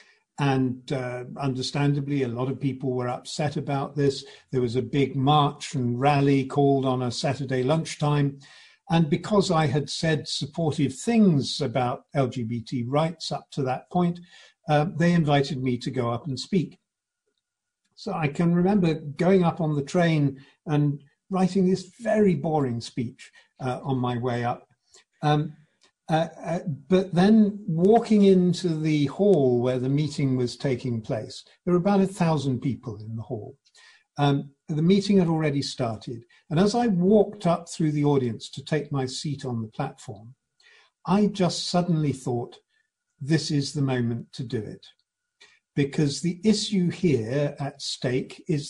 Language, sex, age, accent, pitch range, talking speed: English, male, 50-69, British, 135-180 Hz, 160 wpm